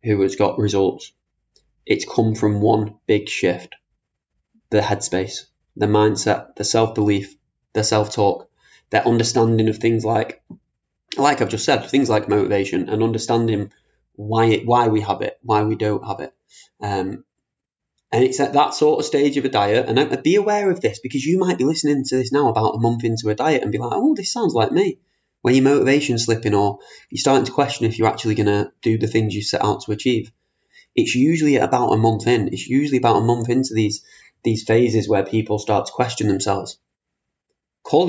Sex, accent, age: male, British, 20-39